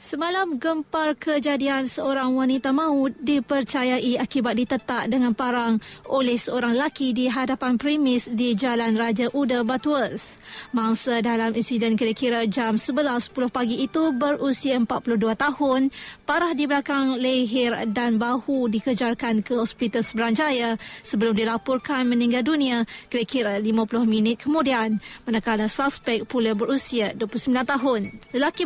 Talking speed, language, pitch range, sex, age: 120 wpm, Malay, 235-280 Hz, female, 20-39